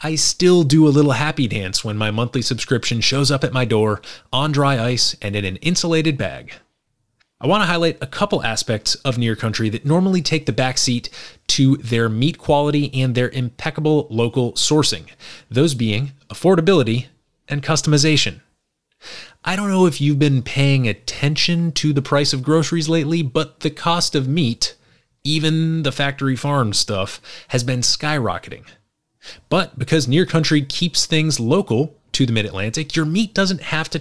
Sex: male